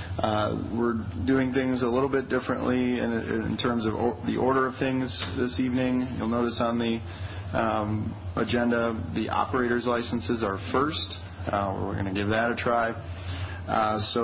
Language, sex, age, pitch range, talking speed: English, male, 30-49, 95-125 Hz, 170 wpm